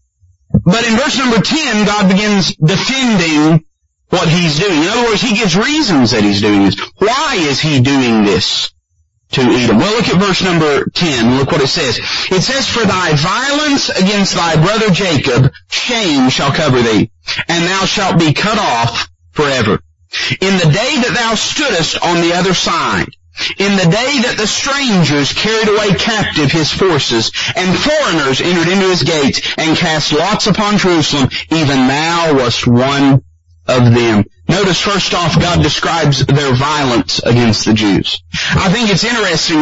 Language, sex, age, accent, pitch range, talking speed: English, male, 40-59, American, 125-190 Hz, 170 wpm